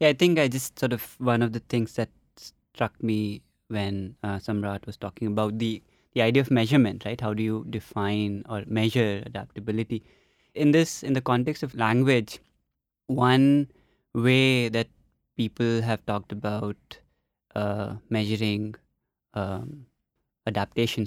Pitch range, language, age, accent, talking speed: 105-125 Hz, English, 20-39, Indian, 145 wpm